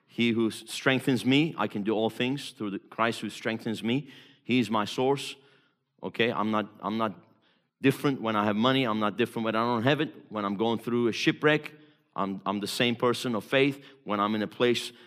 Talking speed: 220 wpm